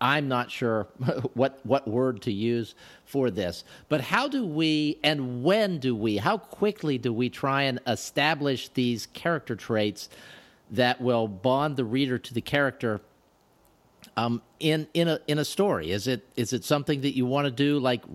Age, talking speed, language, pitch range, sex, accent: 50-69, 180 wpm, English, 120-150 Hz, male, American